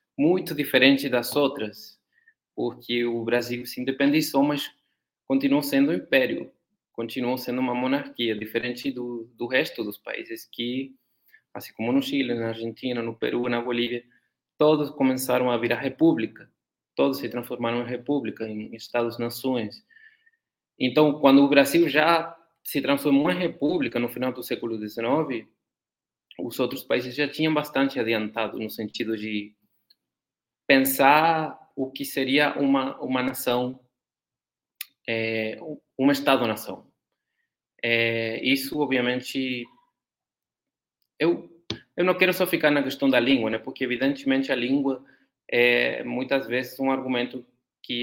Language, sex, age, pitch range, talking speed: Portuguese, male, 20-39, 120-145 Hz, 130 wpm